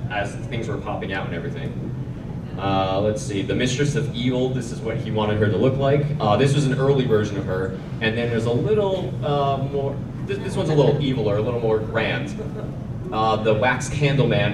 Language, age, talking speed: English, 20-39, 215 wpm